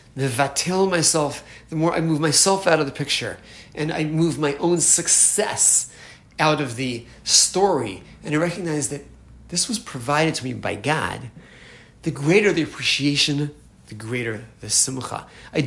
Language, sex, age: English, male, 30-49